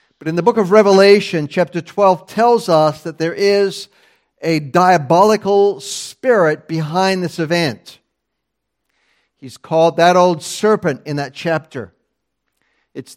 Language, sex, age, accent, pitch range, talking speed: English, male, 50-69, American, 160-200 Hz, 130 wpm